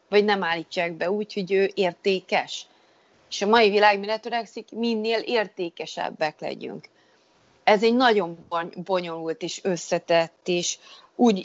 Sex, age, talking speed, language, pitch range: female, 30-49, 130 wpm, Hungarian, 170-220 Hz